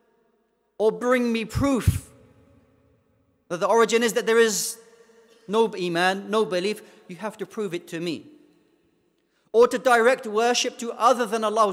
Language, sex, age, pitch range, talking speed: English, male, 40-59, 190-235 Hz, 155 wpm